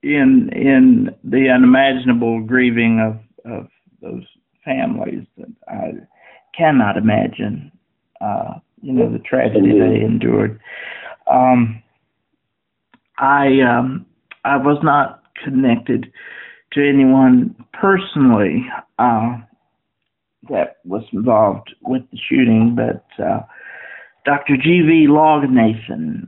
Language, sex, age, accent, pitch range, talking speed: English, male, 50-69, American, 120-145 Hz, 100 wpm